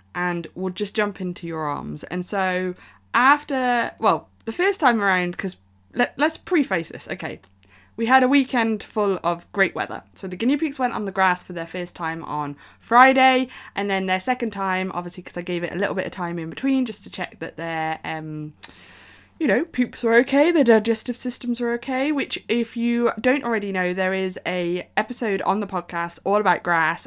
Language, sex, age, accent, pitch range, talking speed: English, female, 20-39, British, 175-230 Hz, 205 wpm